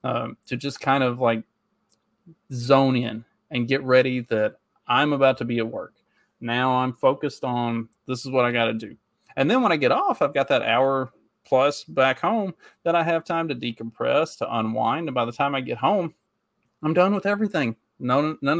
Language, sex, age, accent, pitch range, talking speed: English, male, 30-49, American, 115-150 Hz, 205 wpm